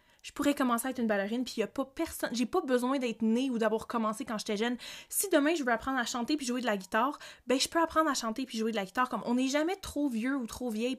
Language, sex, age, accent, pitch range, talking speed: French, female, 20-39, Canadian, 215-255 Hz, 300 wpm